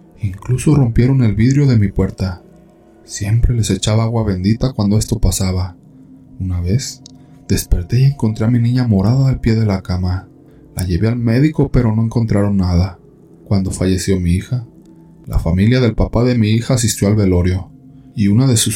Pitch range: 95-125 Hz